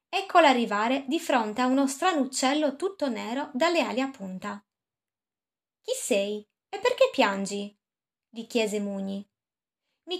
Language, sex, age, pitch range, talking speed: Italian, female, 20-39, 220-330 Hz, 135 wpm